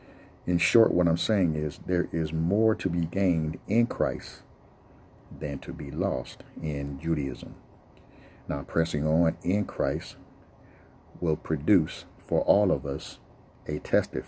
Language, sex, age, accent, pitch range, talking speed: English, male, 50-69, American, 75-95 Hz, 140 wpm